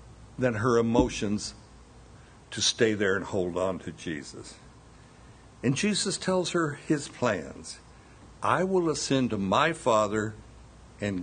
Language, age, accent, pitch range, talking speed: English, 60-79, American, 100-125 Hz, 130 wpm